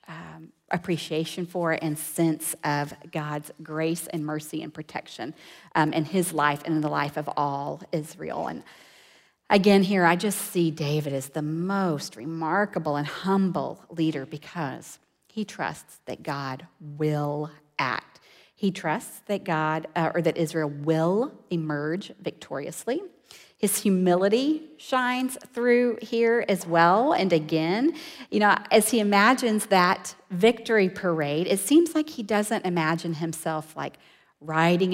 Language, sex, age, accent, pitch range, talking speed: English, female, 40-59, American, 160-205 Hz, 140 wpm